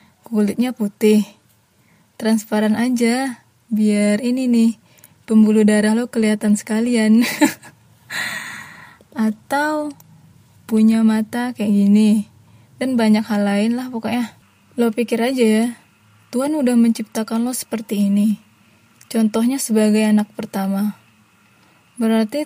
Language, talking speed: Indonesian, 100 wpm